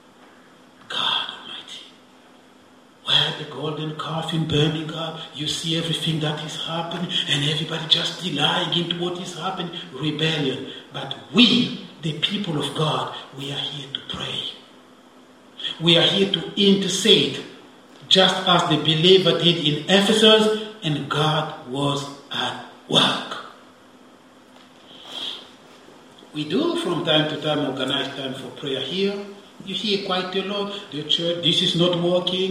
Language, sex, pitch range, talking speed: English, male, 155-200 Hz, 135 wpm